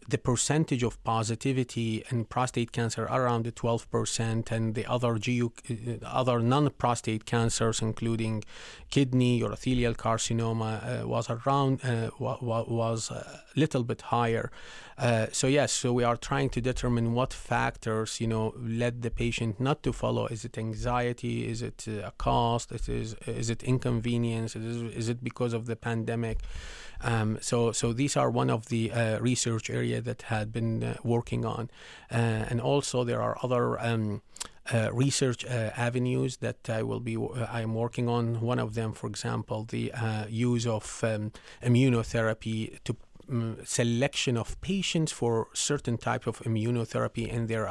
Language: English